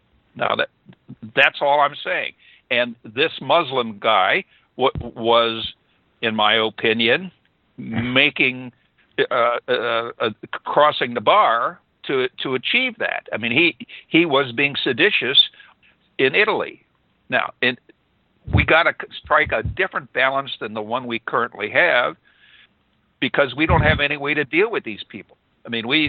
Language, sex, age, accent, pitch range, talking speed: English, male, 60-79, American, 120-155 Hz, 145 wpm